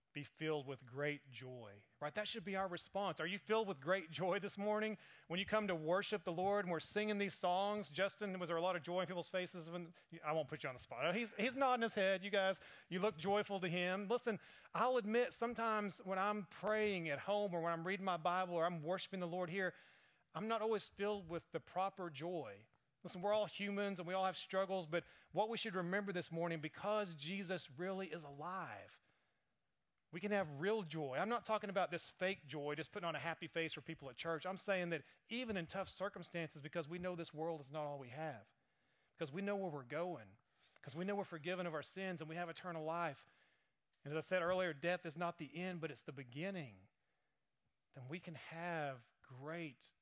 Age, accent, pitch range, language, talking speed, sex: 30-49, American, 155-195 Hz, English, 225 wpm, male